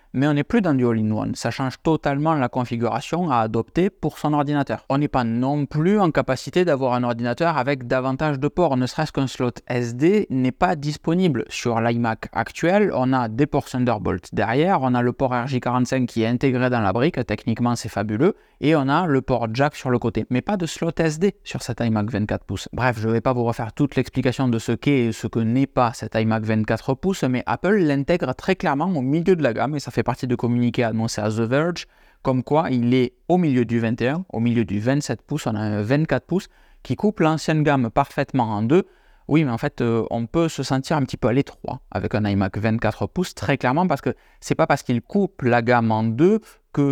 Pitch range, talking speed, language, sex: 115-145 Hz, 230 wpm, French, male